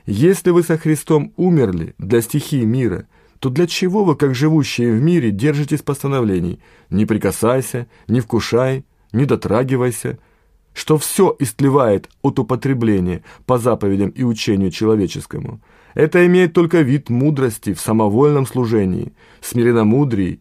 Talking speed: 125 wpm